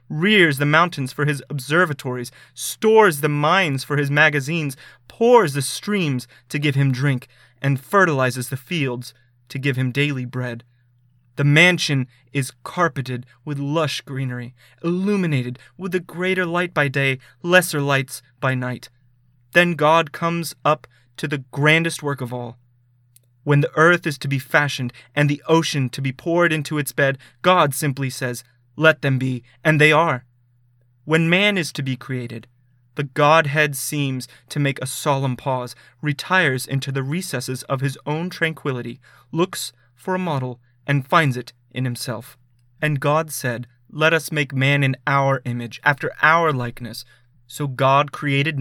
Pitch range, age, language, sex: 125-155 Hz, 30-49, English, male